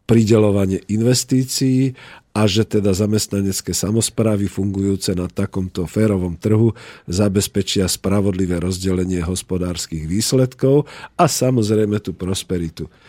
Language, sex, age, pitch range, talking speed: Slovak, male, 50-69, 95-115 Hz, 95 wpm